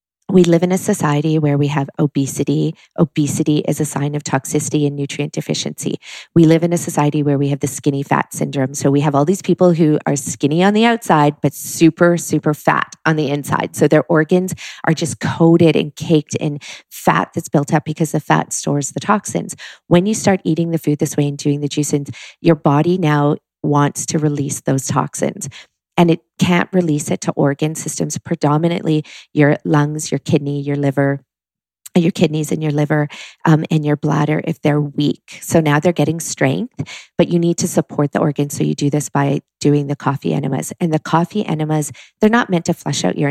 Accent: American